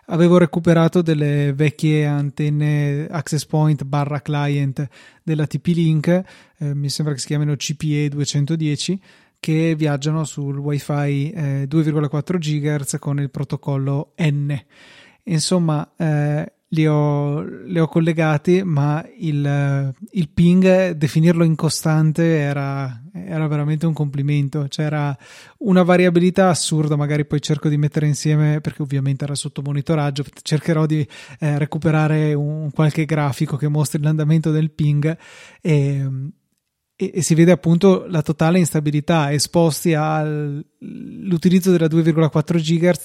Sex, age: male, 20-39